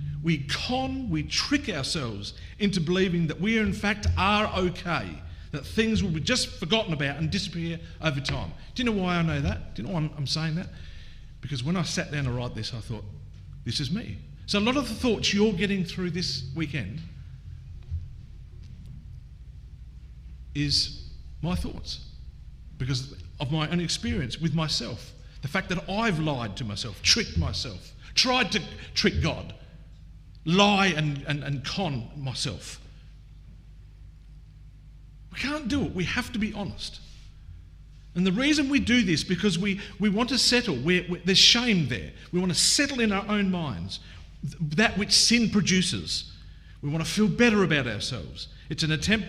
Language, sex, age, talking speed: English, male, 50-69, 170 wpm